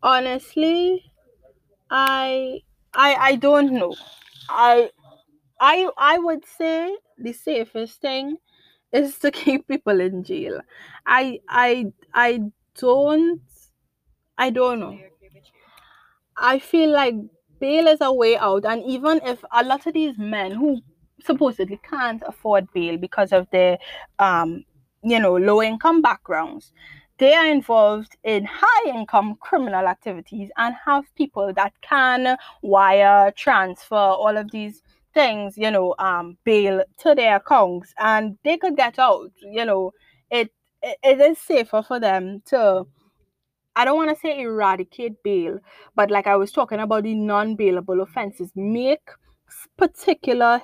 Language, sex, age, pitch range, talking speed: English, female, 20-39, 200-280 Hz, 135 wpm